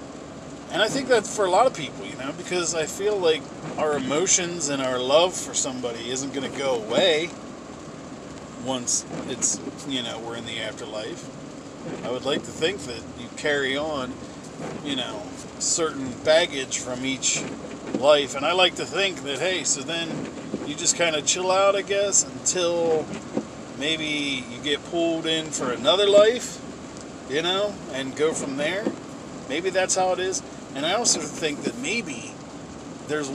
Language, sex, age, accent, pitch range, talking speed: English, male, 40-59, American, 140-190 Hz, 170 wpm